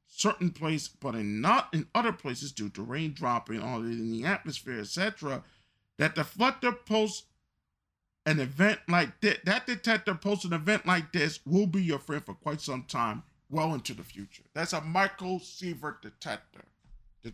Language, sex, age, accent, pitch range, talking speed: English, male, 40-59, American, 125-170 Hz, 170 wpm